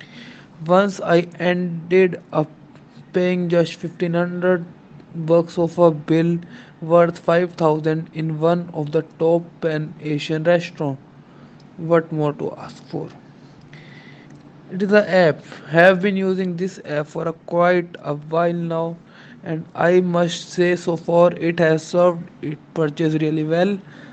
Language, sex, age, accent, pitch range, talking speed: English, male, 20-39, Indian, 160-180 Hz, 135 wpm